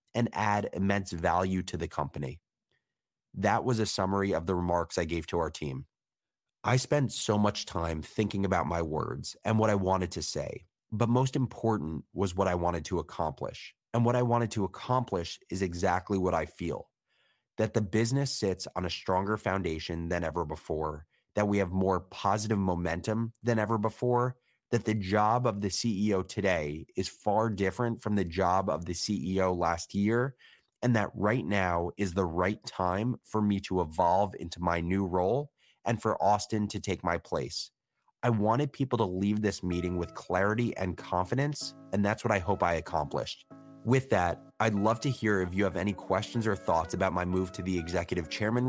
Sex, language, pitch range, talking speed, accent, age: male, English, 90-110 Hz, 190 wpm, American, 30-49